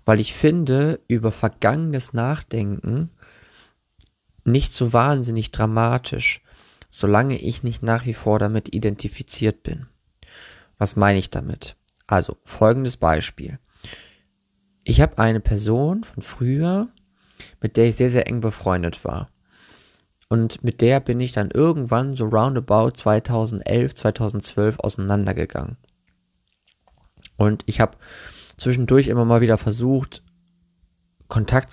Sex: male